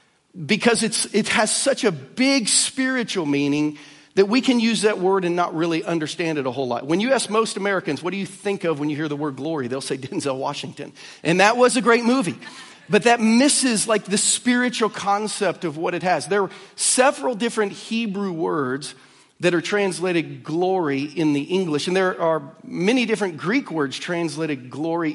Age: 40-59